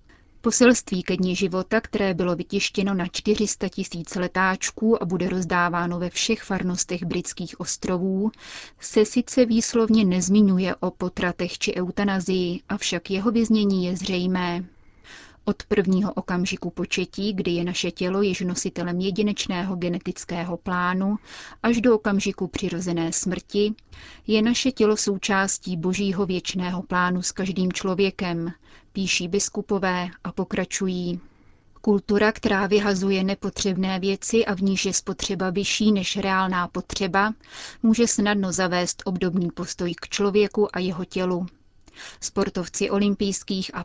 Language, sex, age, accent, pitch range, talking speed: Czech, female, 30-49, native, 180-205 Hz, 125 wpm